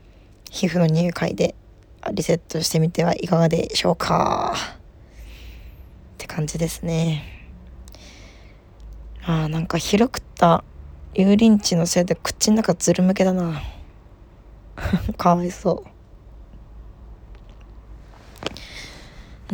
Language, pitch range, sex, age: Japanese, 160-200 Hz, female, 20-39